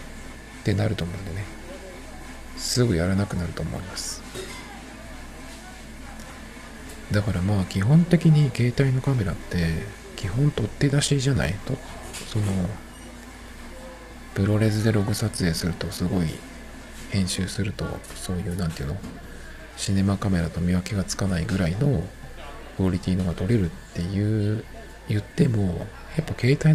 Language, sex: Japanese, male